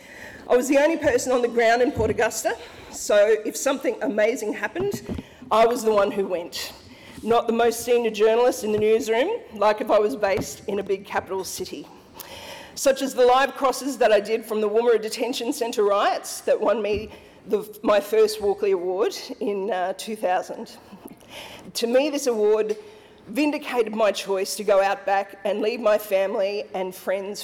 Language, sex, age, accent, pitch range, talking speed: English, female, 40-59, Australian, 210-275 Hz, 175 wpm